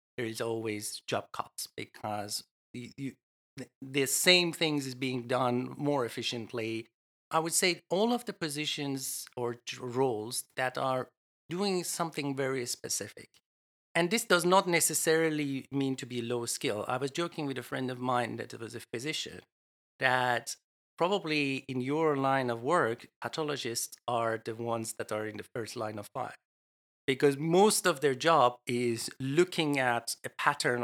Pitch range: 120-160 Hz